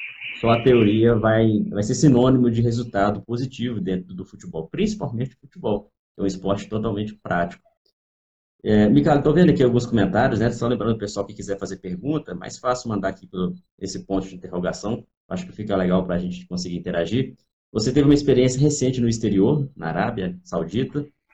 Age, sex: 20-39, male